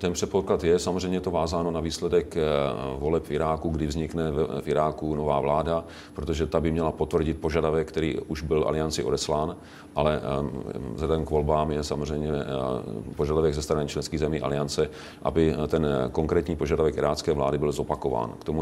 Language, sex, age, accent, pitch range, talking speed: Czech, male, 40-59, native, 75-85 Hz, 160 wpm